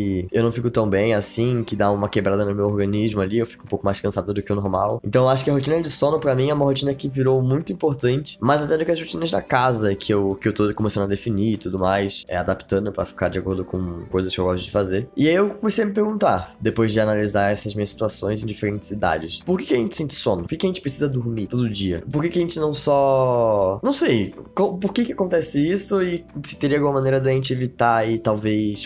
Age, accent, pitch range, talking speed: 10-29, Brazilian, 100-135 Hz, 260 wpm